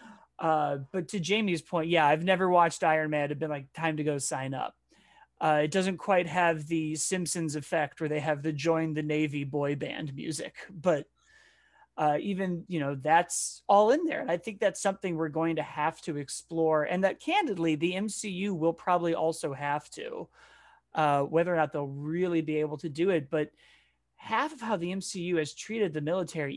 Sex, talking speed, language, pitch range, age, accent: male, 200 wpm, English, 150-190 Hz, 30-49, American